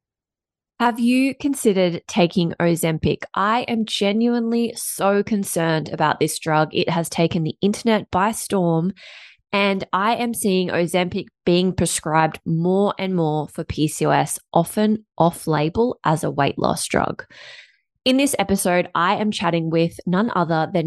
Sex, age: female, 20-39